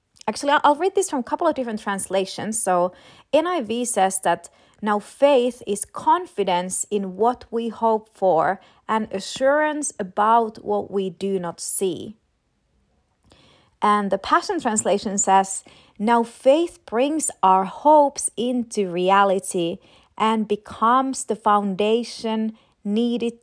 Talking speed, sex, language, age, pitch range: 125 wpm, female, English, 30-49, 190-245 Hz